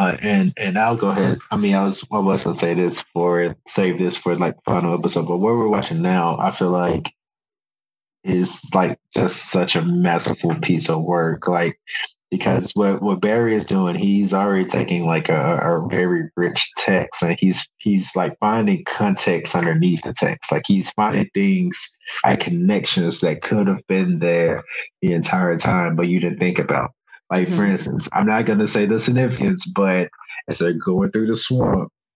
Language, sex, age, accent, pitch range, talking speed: English, male, 20-39, American, 90-130 Hz, 185 wpm